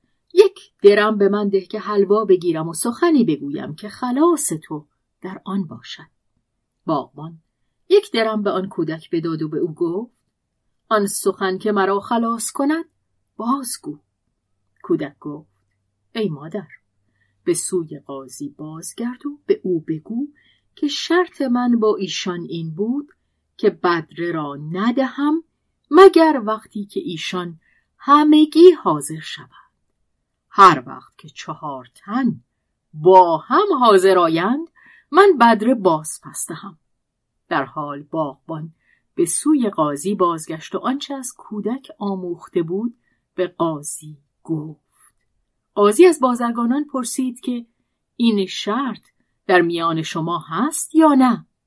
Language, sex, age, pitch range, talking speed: Persian, female, 40-59, 160-260 Hz, 125 wpm